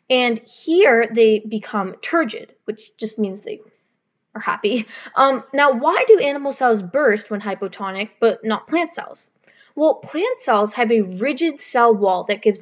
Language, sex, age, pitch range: English, female, 20-39, 205-270 Hz